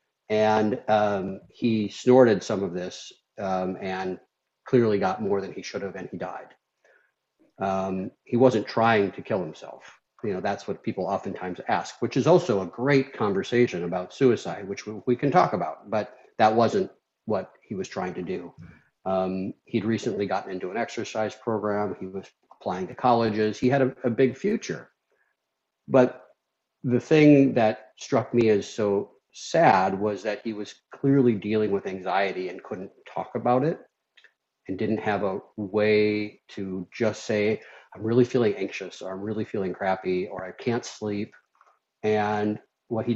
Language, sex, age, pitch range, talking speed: English, male, 40-59, 100-120 Hz, 170 wpm